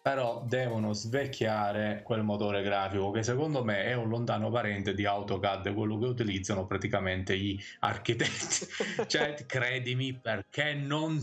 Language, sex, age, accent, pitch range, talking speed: Italian, male, 30-49, native, 100-120 Hz, 135 wpm